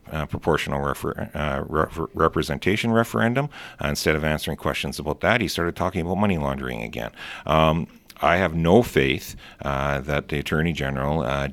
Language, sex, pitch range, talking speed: English, male, 75-85 Hz, 155 wpm